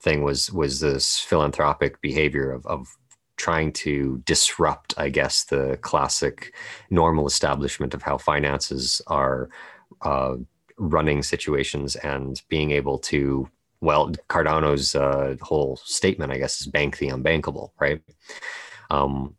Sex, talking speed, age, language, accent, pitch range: male, 125 wpm, 30-49, English, American, 70-75 Hz